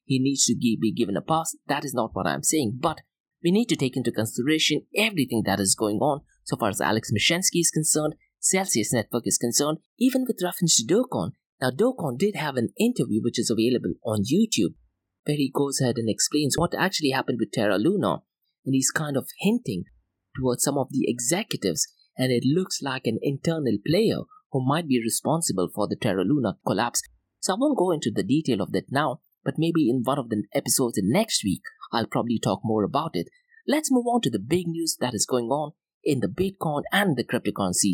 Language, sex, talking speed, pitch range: English, male, 210 wpm, 120-185 Hz